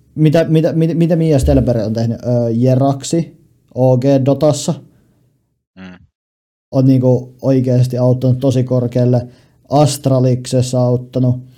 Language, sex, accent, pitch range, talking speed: Finnish, male, native, 120-140 Hz, 100 wpm